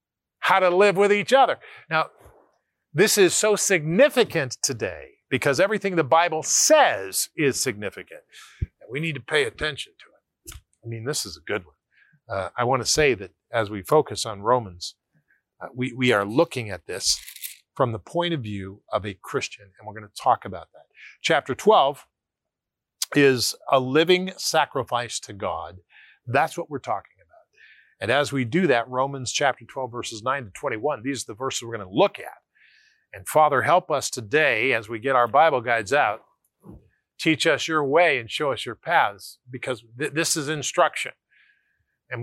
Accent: American